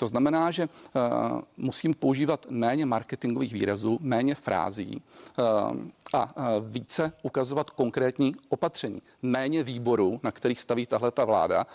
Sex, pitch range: male, 120-145 Hz